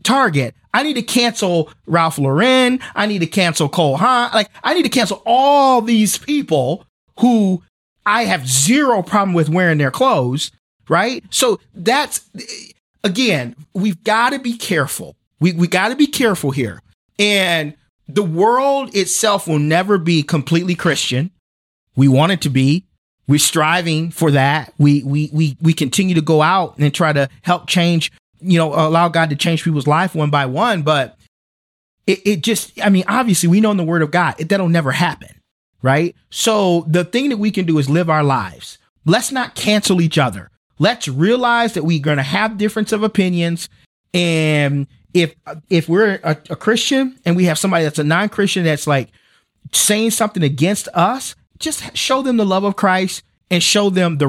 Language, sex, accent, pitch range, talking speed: English, male, American, 150-205 Hz, 180 wpm